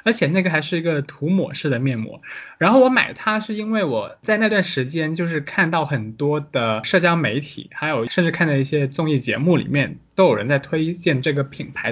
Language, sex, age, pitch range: Chinese, male, 20-39, 130-170 Hz